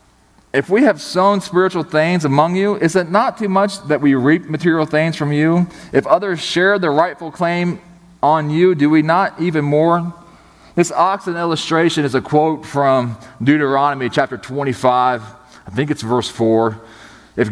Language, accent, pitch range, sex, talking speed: English, American, 125-155 Hz, male, 170 wpm